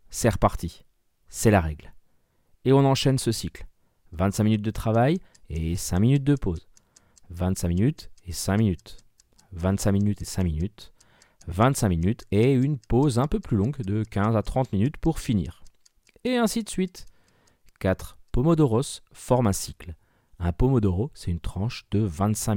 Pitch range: 95-130 Hz